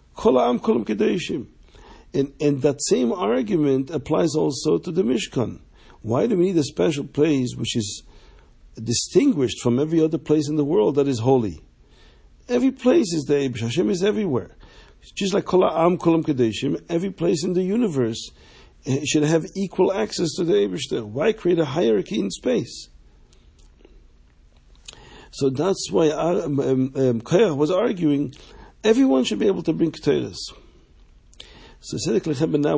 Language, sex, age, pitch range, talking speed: English, male, 50-69, 125-165 Hz, 135 wpm